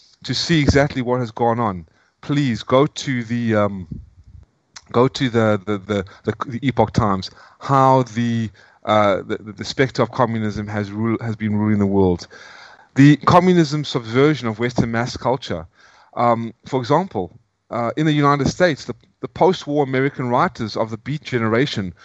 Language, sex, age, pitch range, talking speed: English, male, 30-49, 115-145 Hz, 160 wpm